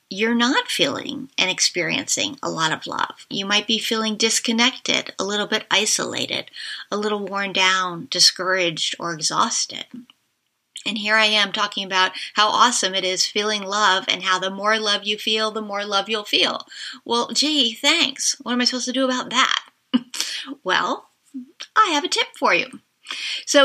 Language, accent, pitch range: English, American, 195-255 Hz